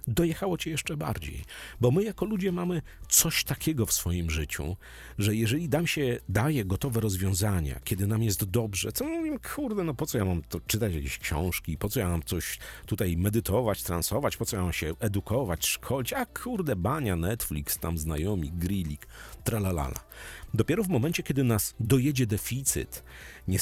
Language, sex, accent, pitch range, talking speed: Polish, male, native, 85-115 Hz, 175 wpm